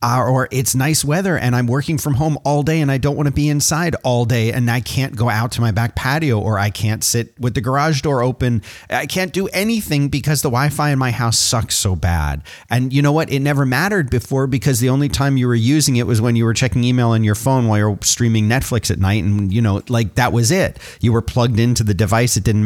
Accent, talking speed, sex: American, 260 wpm, male